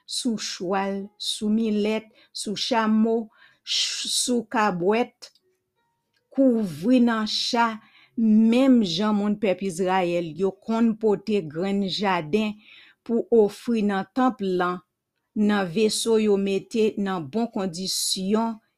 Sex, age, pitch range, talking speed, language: female, 50-69, 200-240 Hz, 100 wpm, English